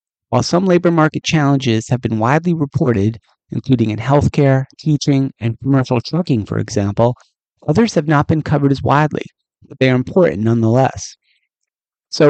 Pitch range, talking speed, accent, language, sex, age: 120-155 Hz, 150 wpm, American, English, male, 30-49